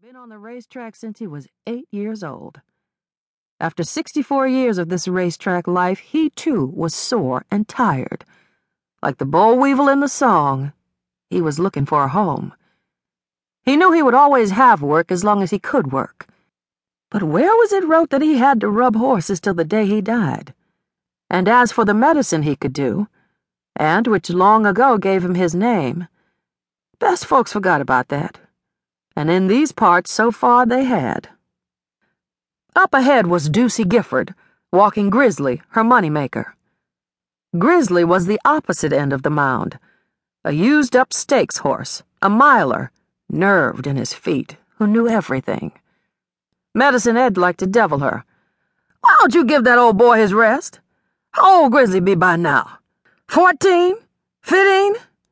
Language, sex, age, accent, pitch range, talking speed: English, female, 50-69, American, 175-265 Hz, 160 wpm